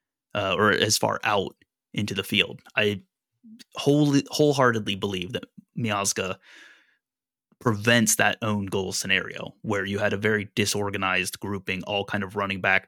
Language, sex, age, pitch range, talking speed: English, male, 30-49, 100-120 Hz, 145 wpm